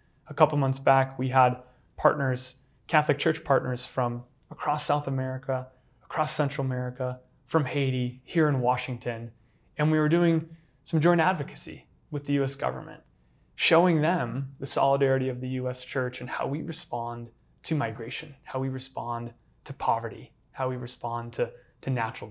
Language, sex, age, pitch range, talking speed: English, male, 20-39, 125-145 Hz, 155 wpm